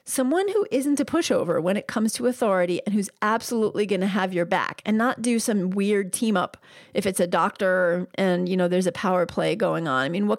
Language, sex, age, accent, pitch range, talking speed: English, female, 30-49, American, 190-245 Hz, 235 wpm